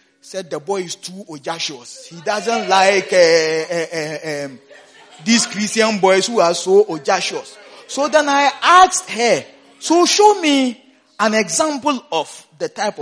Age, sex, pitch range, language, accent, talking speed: 40-59, male, 195-330 Hz, English, Nigerian, 150 wpm